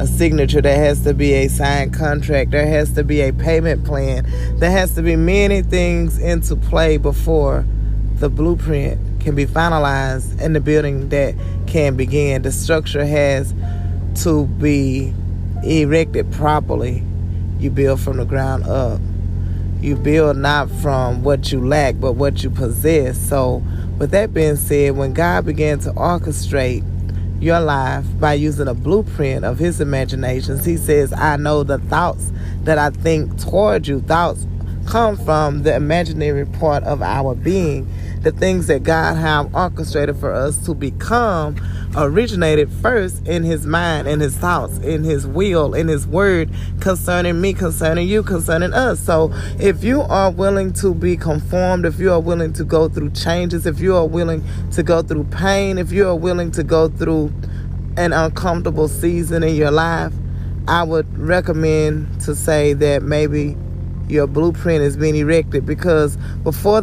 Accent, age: American, 20-39